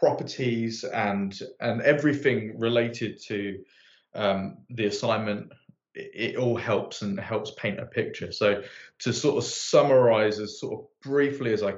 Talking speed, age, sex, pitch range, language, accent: 150 wpm, 20-39, male, 105-125 Hz, English, British